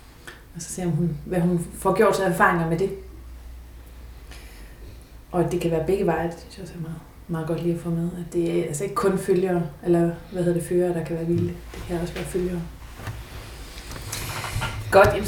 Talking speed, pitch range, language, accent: 215 wpm, 165-210 Hz, Danish, native